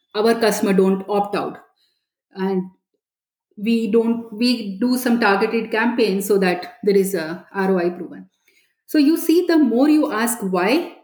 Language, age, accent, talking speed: English, 30-49, Indian, 150 wpm